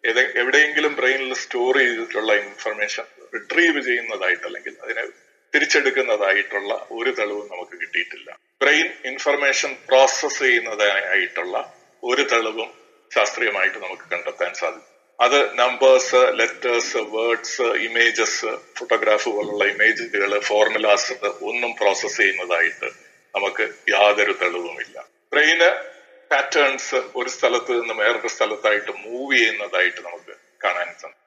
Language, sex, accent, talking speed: Malayalam, male, native, 95 wpm